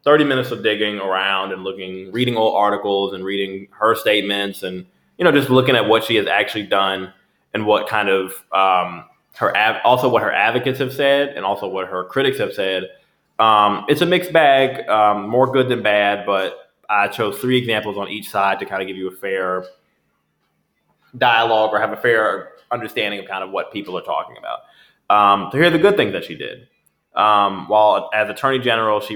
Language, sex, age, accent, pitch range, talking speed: English, male, 20-39, American, 95-115 Hz, 205 wpm